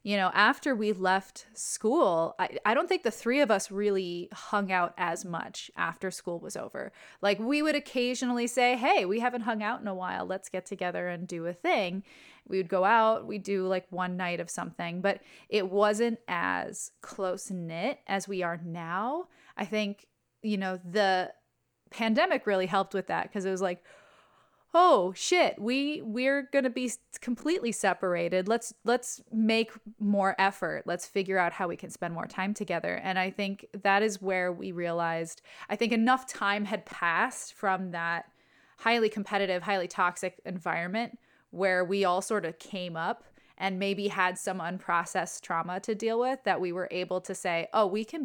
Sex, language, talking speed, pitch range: female, English, 185 wpm, 180-220 Hz